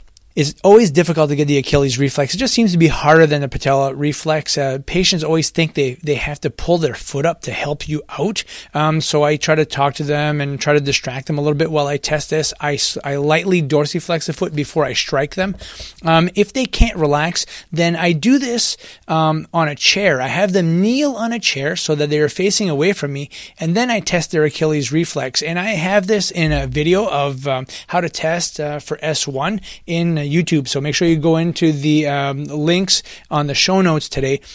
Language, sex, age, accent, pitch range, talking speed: English, male, 30-49, American, 145-170 Hz, 225 wpm